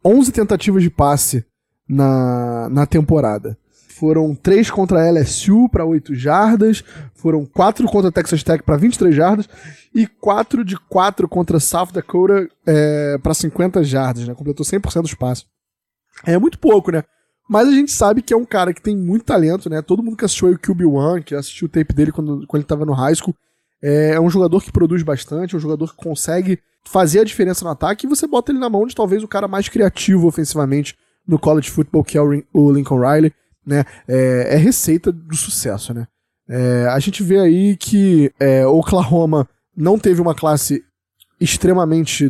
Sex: male